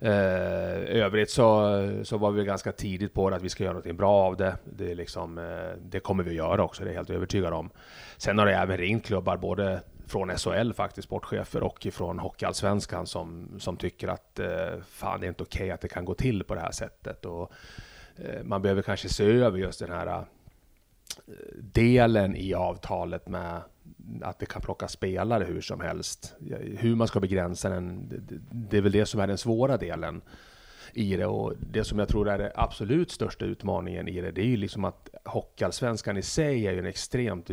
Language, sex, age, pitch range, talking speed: Swedish, male, 30-49, 90-105 Hz, 210 wpm